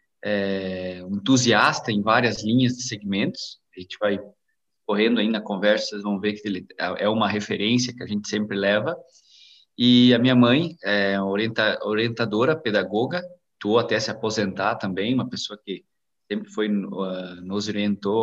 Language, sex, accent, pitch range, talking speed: Portuguese, male, Brazilian, 100-120 Hz, 155 wpm